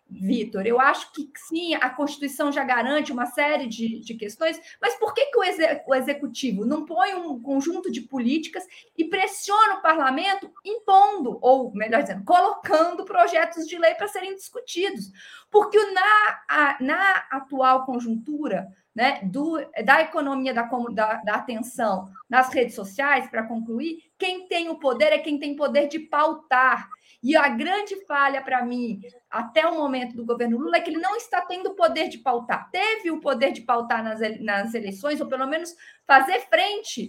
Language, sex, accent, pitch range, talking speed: Portuguese, female, Brazilian, 245-350 Hz, 175 wpm